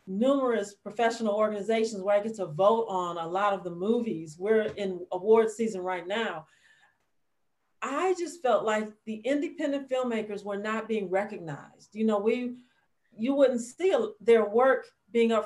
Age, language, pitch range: 40-59, English, 200-250 Hz